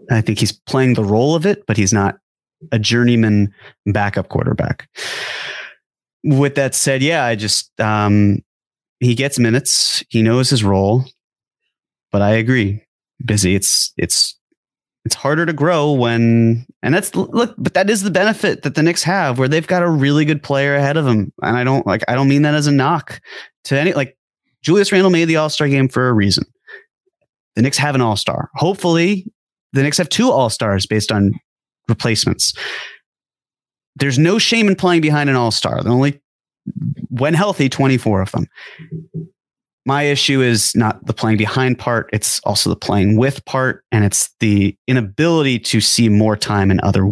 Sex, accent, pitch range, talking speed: male, American, 110-150 Hz, 175 wpm